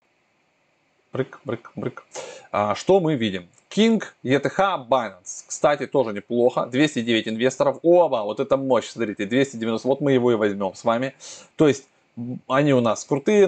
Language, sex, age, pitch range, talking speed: Russian, male, 20-39, 120-175 Hz, 145 wpm